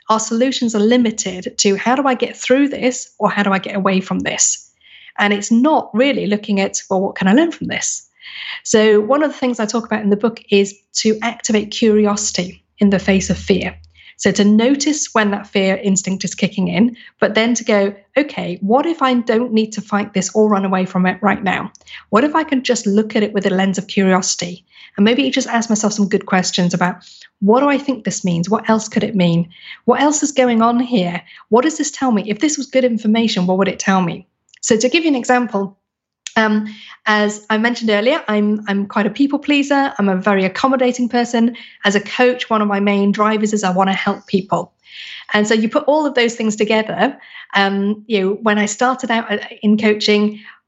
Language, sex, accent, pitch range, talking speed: English, female, British, 200-240 Hz, 225 wpm